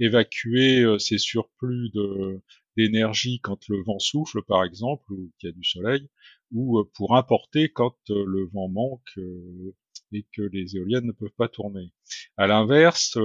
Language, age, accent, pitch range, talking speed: French, 40-59, French, 100-120 Hz, 155 wpm